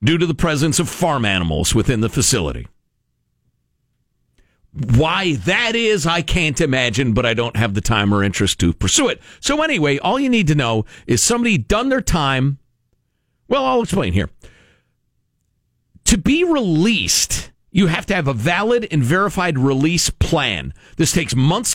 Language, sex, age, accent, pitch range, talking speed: English, male, 50-69, American, 115-185 Hz, 165 wpm